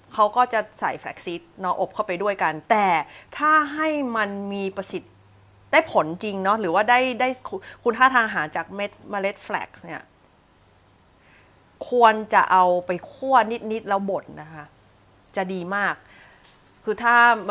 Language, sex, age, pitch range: Thai, female, 30-49, 165-220 Hz